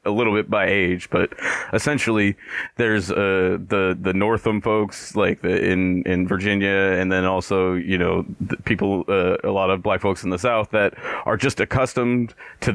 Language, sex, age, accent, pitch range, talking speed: English, male, 30-49, American, 95-110 Hz, 180 wpm